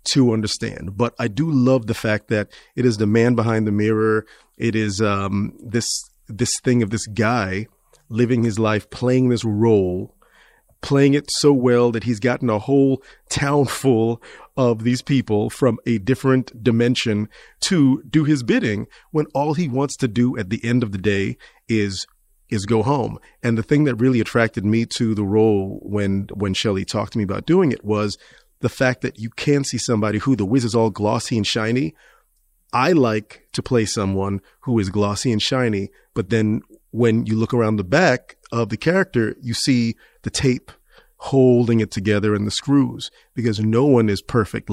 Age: 40-59